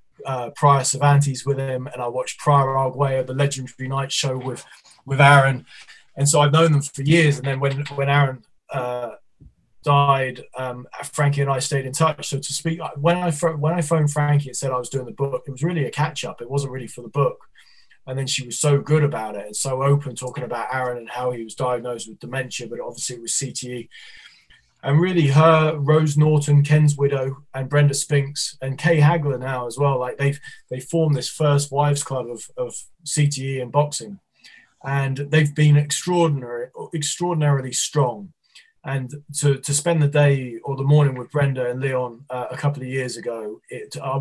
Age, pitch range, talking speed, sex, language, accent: 20-39, 130-150 Hz, 200 wpm, male, English, British